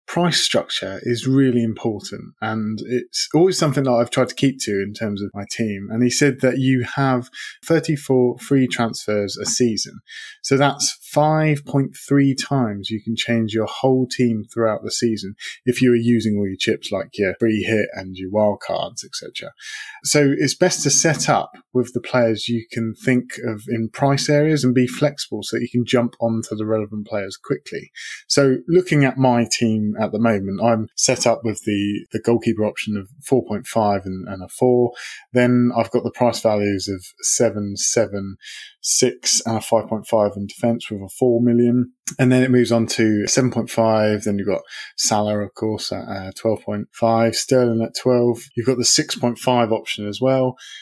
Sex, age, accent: male, 20-39, British